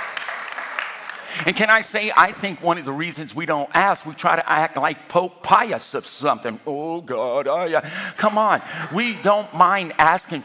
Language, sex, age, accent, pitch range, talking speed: English, male, 50-69, American, 125-175 Hz, 185 wpm